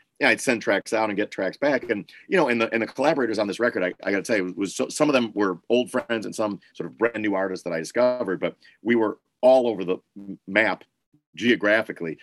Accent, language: American, English